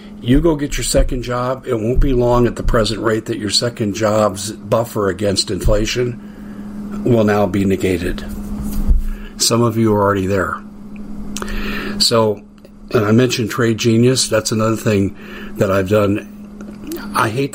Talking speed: 155 wpm